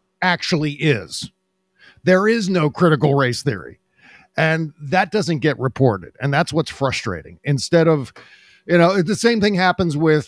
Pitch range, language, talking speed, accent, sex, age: 140-180 Hz, English, 150 wpm, American, male, 50-69